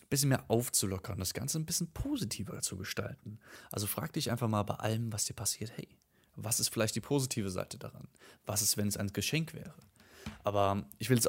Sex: male